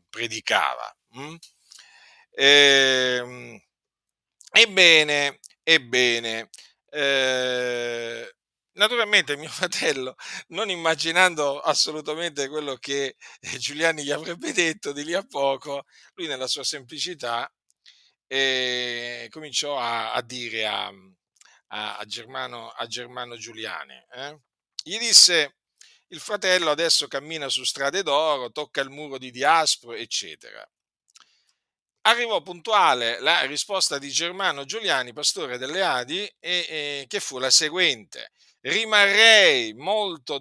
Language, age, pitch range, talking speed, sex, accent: Italian, 50-69, 120-170 Hz, 100 wpm, male, native